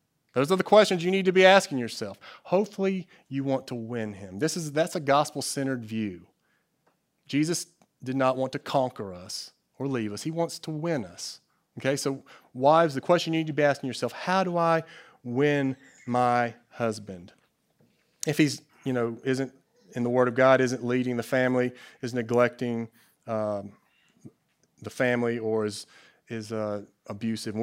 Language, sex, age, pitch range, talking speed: English, male, 30-49, 120-160 Hz, 170 wpm